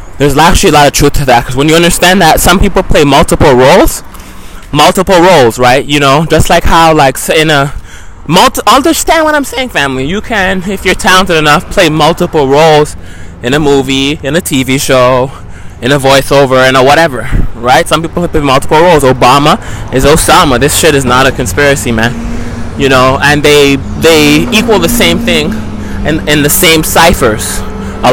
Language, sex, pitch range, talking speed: English, male, 120-170 Hz, 190 wpm